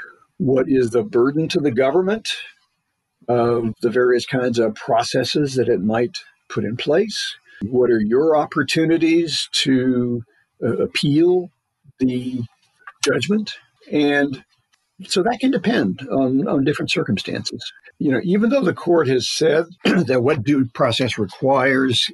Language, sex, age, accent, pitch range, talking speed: English, male, 60-79, American, 115-155 Hz, 135 wpm